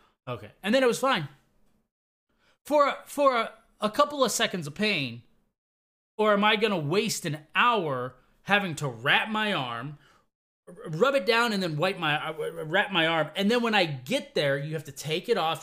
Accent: American